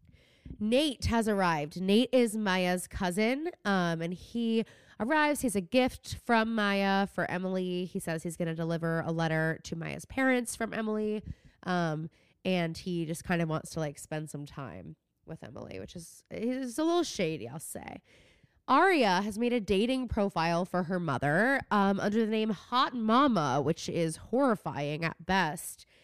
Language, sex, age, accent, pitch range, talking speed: English, female, 20-39, American, 165-220 Hz, 170 wpm